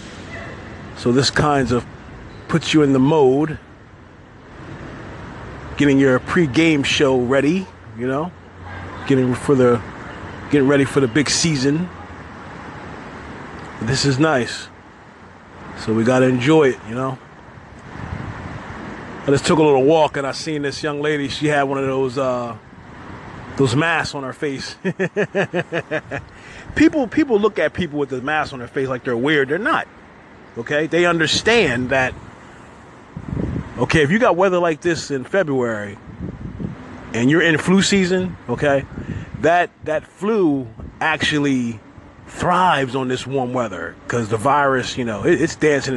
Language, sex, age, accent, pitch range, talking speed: English, male, 30-49, American, 115-150 Hz, 140 wpm